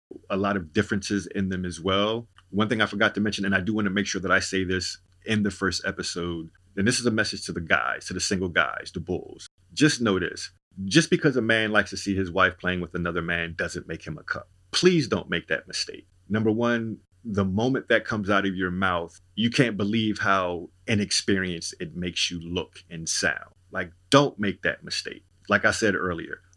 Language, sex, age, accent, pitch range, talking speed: English, male, 30-49, American, 90-110 Hz, 220 wpm